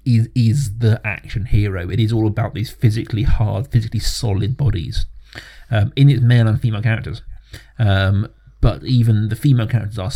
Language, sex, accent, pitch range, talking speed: English, male, British, 105-125 Hz, 170 wpm